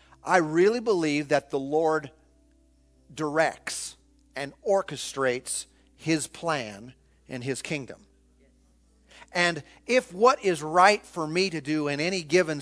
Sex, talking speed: male, 125 wpm